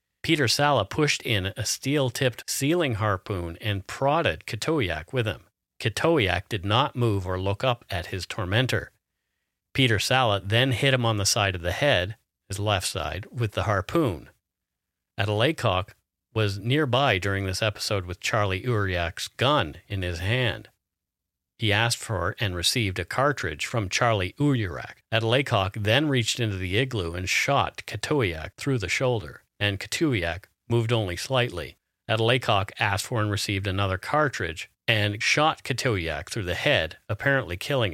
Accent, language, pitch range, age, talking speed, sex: American, English, 95-120 Hz, 50-69, 150 wpm, male